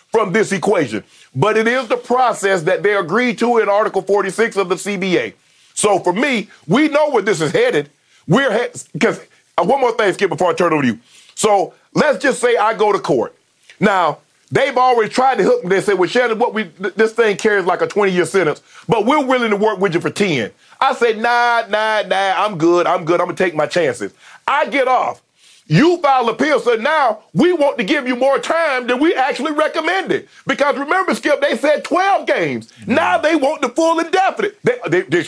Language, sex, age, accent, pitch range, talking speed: English, male, 40-59, American, 195-270 Hz, 215 wpm